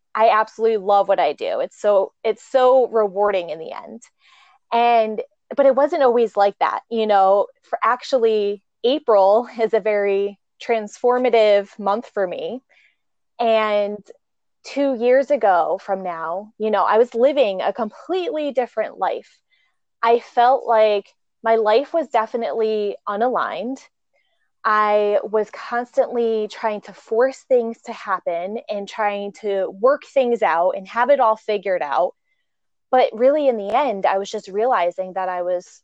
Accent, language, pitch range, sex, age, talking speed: American, English, 200-245 Hz, female, 20-39, 150 wpm